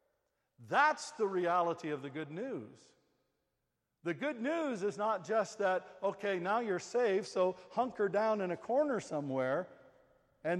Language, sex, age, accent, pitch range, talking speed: English, male, 60-79, American, 180-235 Hz, 145 wpm